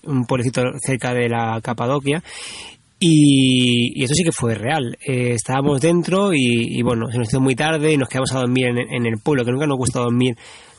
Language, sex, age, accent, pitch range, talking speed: Spanish, male, 20-39, Spanish, 125-155 Hz, 210 wpm